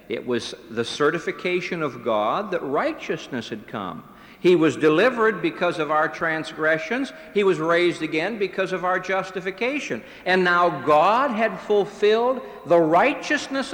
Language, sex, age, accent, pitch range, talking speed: English, male, 60-79, American, 115-190 Hz, 140 wpm